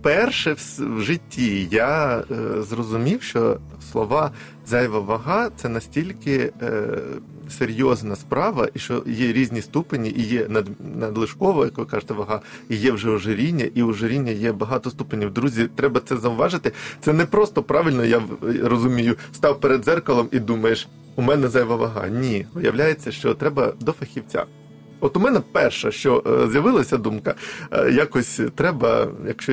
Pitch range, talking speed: 110-145 Hz, 140 wpm